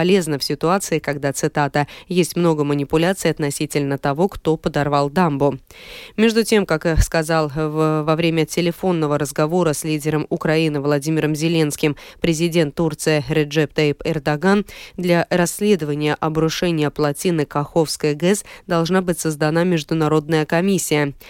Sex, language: female, Russian